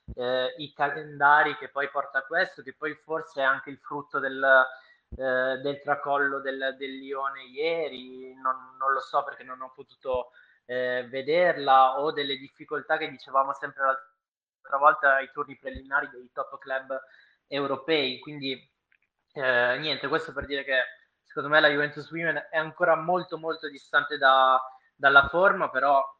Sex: male